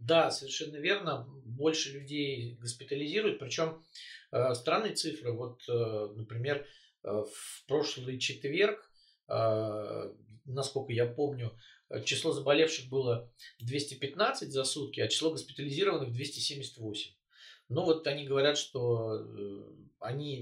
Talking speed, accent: 95 wpm, native